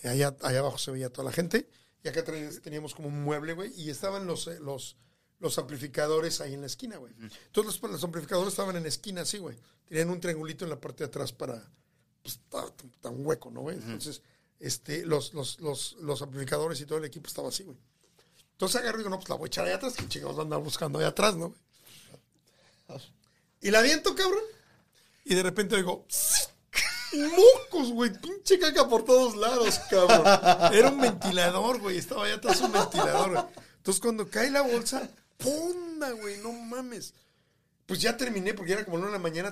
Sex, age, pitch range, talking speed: male, 50-69, 145-225 Hz, 200 wpm